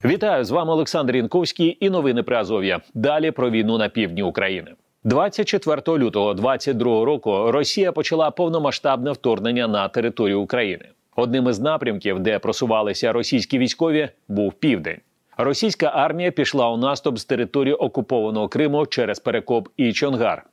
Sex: male